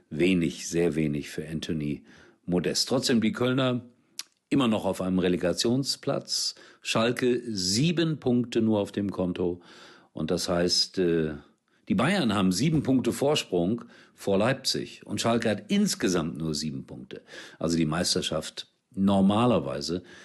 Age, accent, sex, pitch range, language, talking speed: 50-69, German, male, 80-105 Hz, German, 125 wpm